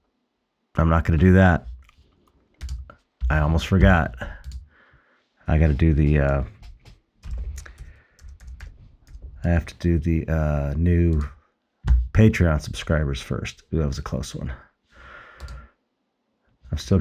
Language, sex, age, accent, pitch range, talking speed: English, male, 40-59, American, 70-85 Hz, 115 wpm